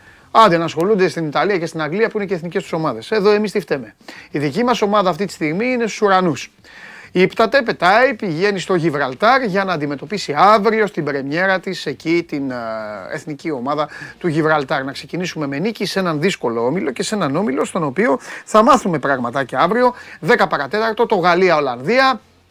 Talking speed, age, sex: 185 wpm, 30-49, male